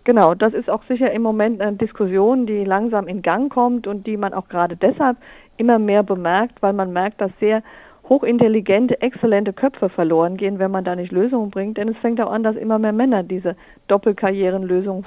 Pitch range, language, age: 185-220 Hz, German, 50-69